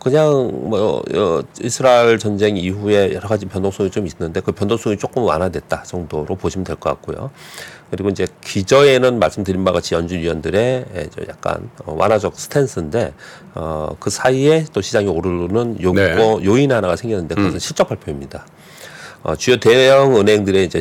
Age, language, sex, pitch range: 40-59, Korean, male, 85-115 Hz